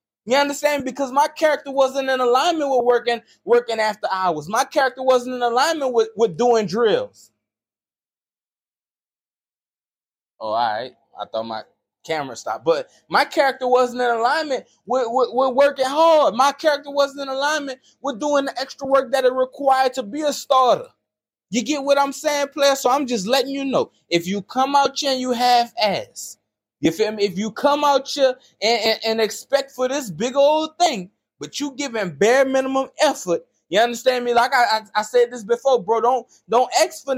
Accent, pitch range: American, 210-275 Hz